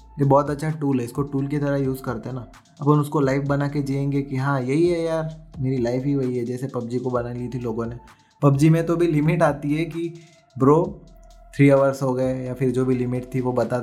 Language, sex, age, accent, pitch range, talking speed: Hindi, male, 20-39, native, 125-155 Hz, 250 wpm